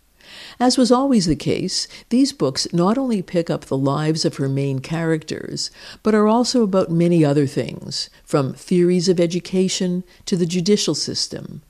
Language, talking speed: English, 165 wpm